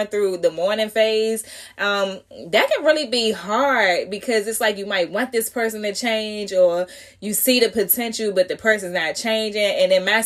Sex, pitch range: female, 185-235 Hz